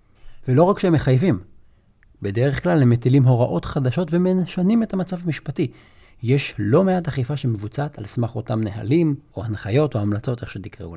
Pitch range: 105-150 Hz